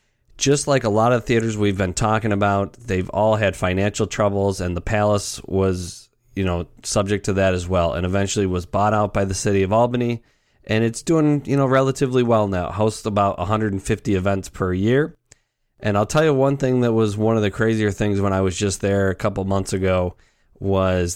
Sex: male